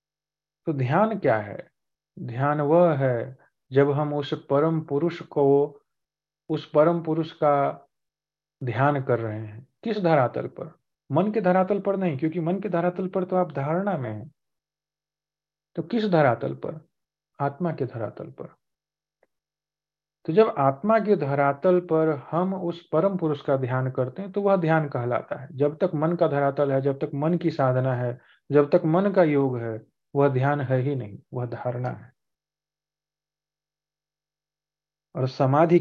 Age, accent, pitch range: 40-59, native, 130-160 Hz